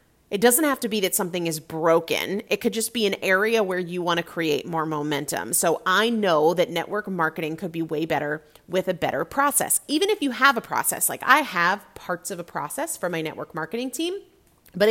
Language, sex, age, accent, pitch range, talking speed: English, female, 30-49, American, 170-230 Hz, 220 wpm